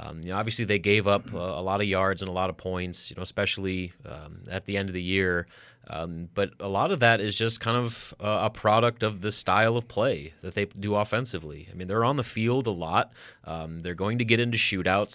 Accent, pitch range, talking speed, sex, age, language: American, 95-115 Hz, 255 wpm, male, 30-49, English